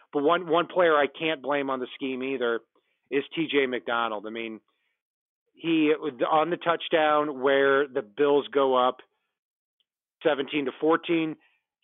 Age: 40-59